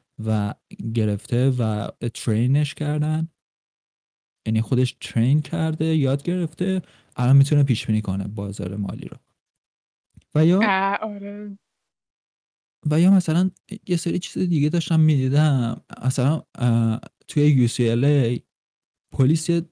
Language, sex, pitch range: Persian, male, 115-150 Hz